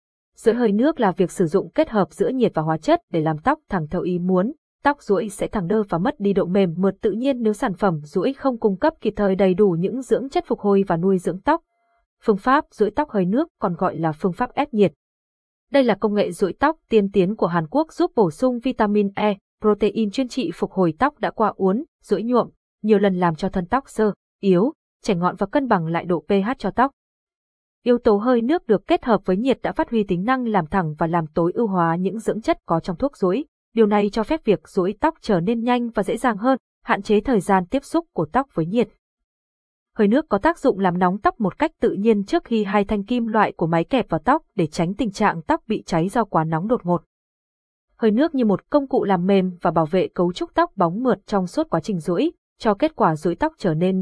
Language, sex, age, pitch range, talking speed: Vietnamese, female, 20-39, 185-255 Hz, 250 wpm